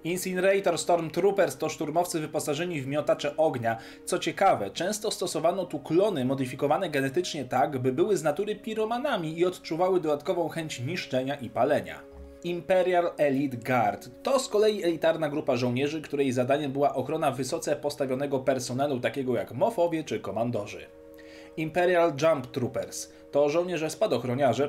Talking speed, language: 135 wpm, Polish